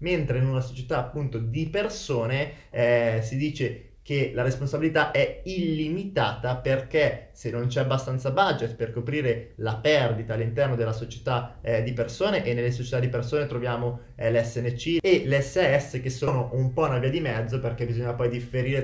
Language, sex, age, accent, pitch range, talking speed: Italian, male, 20-39, native, 120-145 Hz, 170 wpm